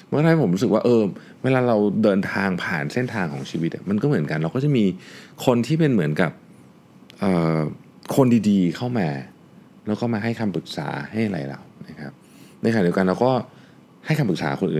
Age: 20-39